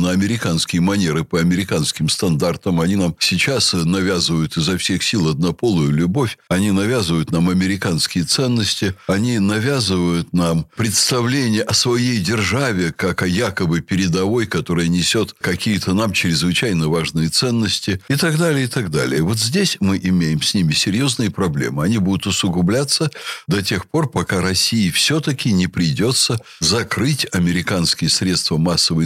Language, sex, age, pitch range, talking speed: Russian, male, 60-79, 90-145 Hz, 135 wpm